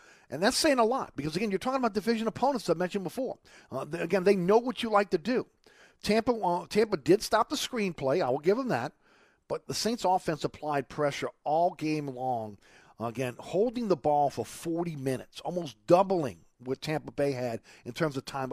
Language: English